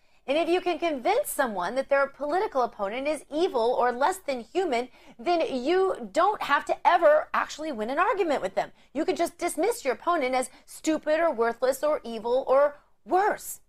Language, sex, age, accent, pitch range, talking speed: English, female, 30-49, American, 195-300 Hz, 185 wpm